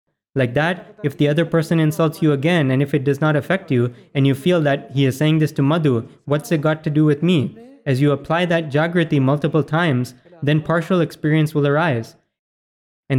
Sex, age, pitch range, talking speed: male, 20-39, 140-170 Hz, 210 wpm